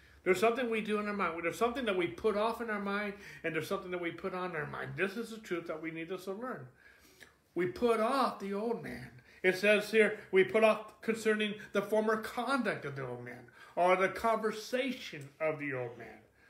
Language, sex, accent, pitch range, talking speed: English, male, American, 185-245 Hz, 230 wpm